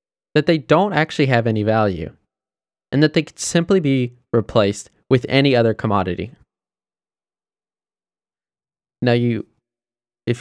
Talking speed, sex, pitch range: 120 wpm, male, 120-185 Hz